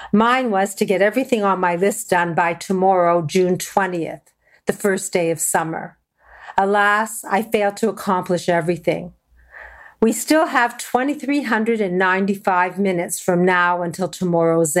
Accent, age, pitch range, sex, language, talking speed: American, 50-69, 180-225 Hz, female, English, 135 wpm